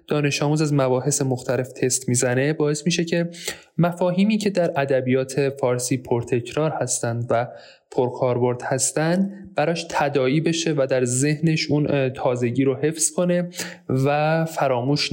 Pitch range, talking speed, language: 125-160 Hz, 130 wpm, Persian